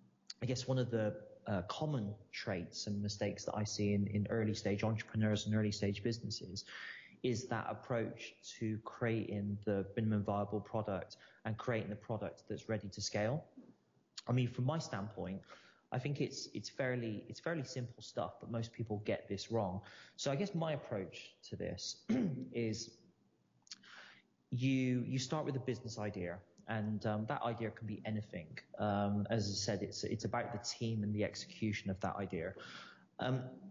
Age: 30-49